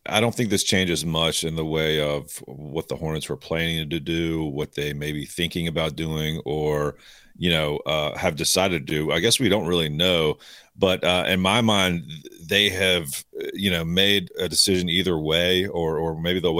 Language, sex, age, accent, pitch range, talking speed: English, male, 40-59, American, 80-100 Hz, 205 wpm